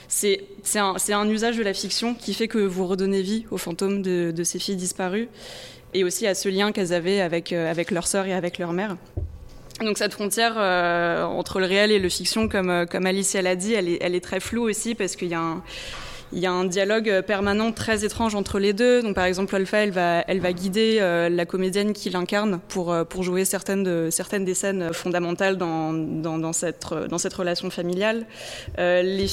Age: 20-39